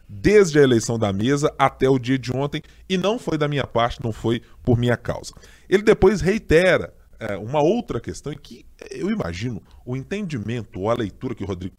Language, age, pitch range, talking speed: Portuguese, 20-39, 110-165 Hz, 205 wpm